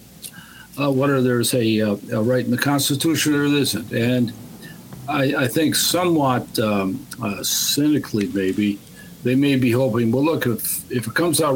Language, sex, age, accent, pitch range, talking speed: English, male, 60-79, American, 110-145 Hz, 170 wpm